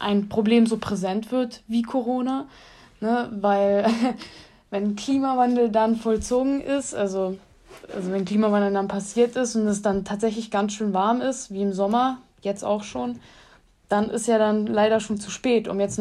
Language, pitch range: German, 195-225 Hz